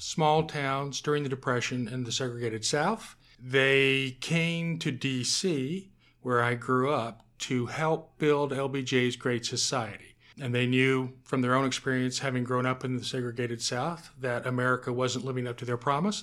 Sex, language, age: male, English, 40-59